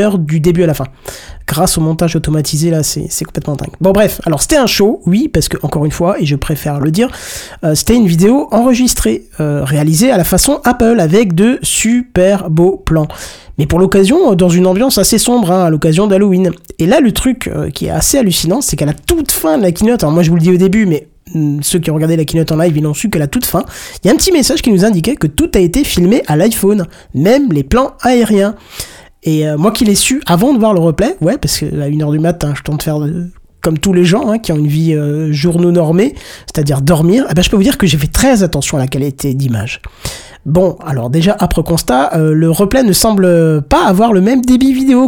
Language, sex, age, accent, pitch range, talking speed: French, male, 20-39, French, 160-215 Hz, 250 wpm